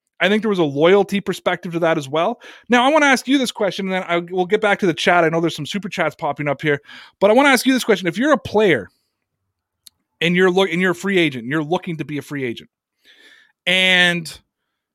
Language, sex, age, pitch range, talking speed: English, male, 30-49, 155-205 Hz, 255 wpm